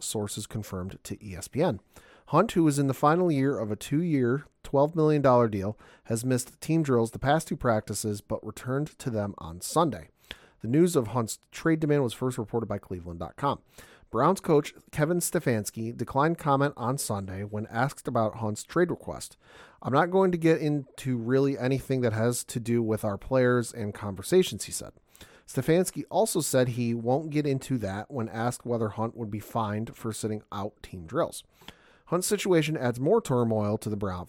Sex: male